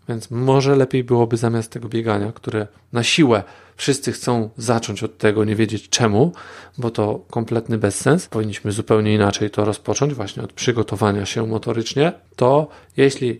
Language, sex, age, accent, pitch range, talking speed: Polish, male, 40-59, native, 110-140 Hz, 150 wpm